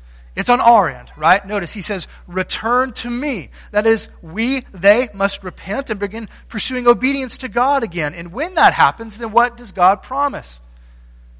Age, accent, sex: 30-49, American, male